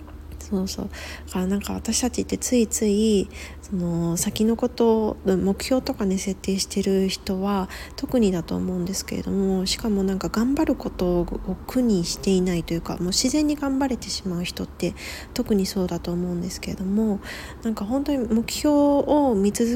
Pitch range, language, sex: 180-220 Hz, Japanese, female